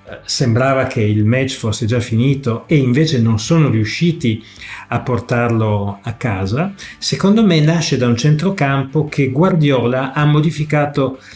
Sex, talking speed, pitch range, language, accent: male, 135 wpm, 115-150 Hz, Italian, native